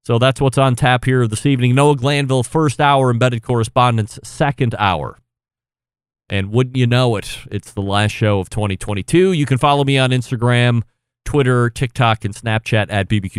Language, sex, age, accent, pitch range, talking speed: English, male, 30-49, American, 115-150 Hz, 175 wpm